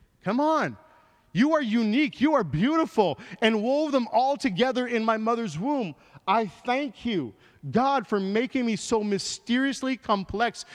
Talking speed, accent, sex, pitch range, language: 150 wpm, American, male, 155-215 Hz, English